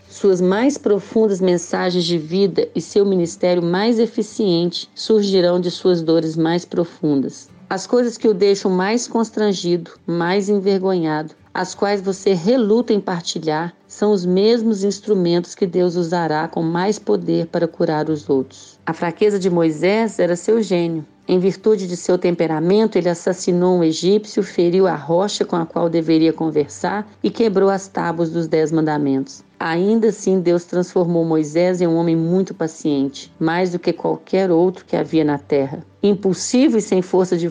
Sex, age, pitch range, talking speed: female, 40-59, 170-210 Hz, 160 wpm